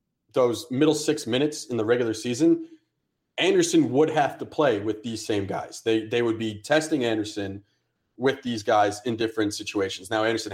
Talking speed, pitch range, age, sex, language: 175 wpm, 110-155 Hz, 30-49, male, English